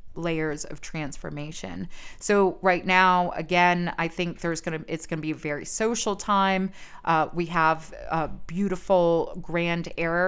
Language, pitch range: English, 165-200 Hz